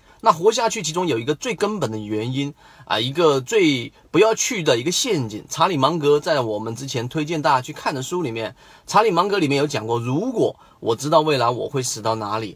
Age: 30-49